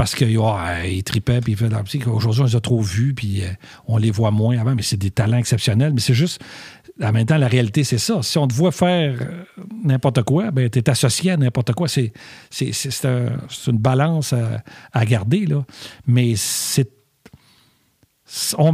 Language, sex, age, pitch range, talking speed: French, male, 50-69, 110-150 Hz, 190 wpm